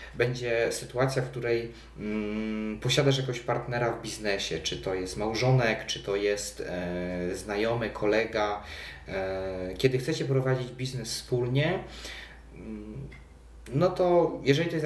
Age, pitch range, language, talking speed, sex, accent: 30-49, 105-135 Hz, Polish, 130 wpm, male, native